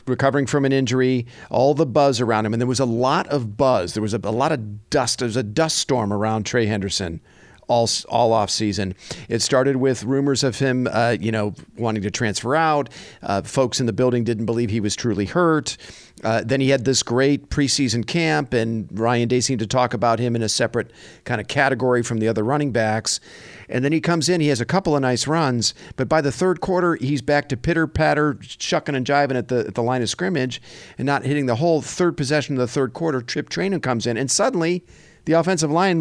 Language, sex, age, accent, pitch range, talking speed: English, male, 50-69, American, 115-150 Hz, 225 wpm